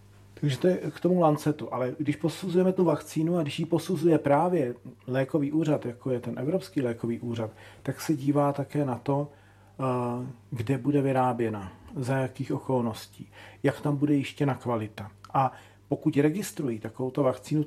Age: 40-59